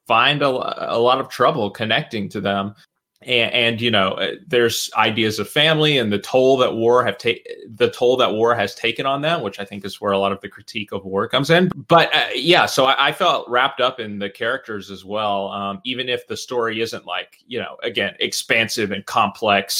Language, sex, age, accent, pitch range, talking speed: English, male, 20-39, American, 100-125 Hz, 220 wpm